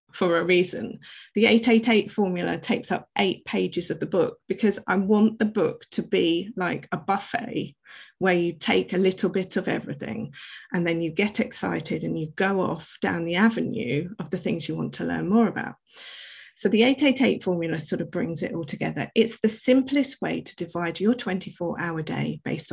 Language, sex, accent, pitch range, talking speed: English, female, British, 175-230 Hz, 190 wpm